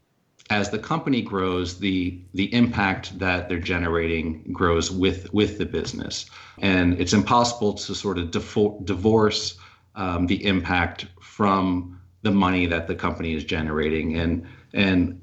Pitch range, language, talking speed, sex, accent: 90-105 Hz, English, 140 wpm, male, American